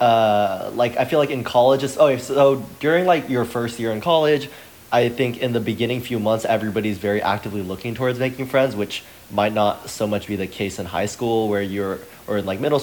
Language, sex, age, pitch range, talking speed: English, male, 20-39, 105-130 Hz, 225 wpm